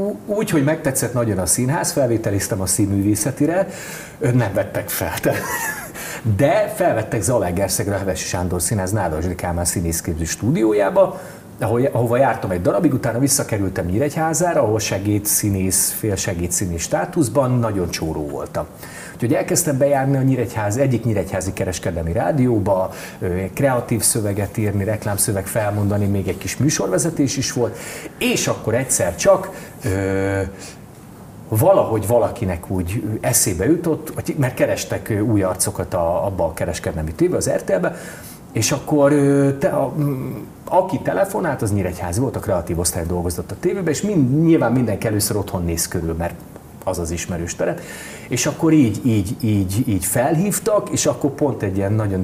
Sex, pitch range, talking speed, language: male, 95-140 Hz, 140 wpm, Hungarian